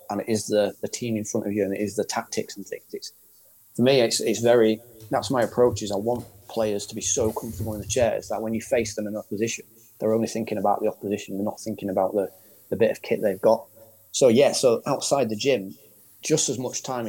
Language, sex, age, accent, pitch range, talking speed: English, male, 30-49, British, 105-120 Hz, 250 wpm